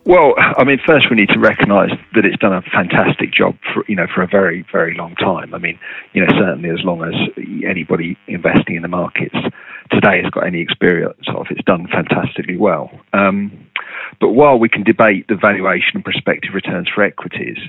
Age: 40-59